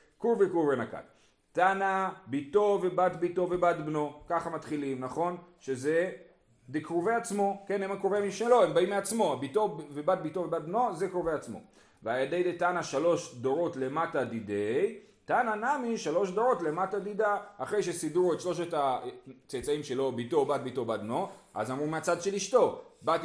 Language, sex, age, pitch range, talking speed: Hebrew, male, 40-59, 150-205 Hz, 120 wpm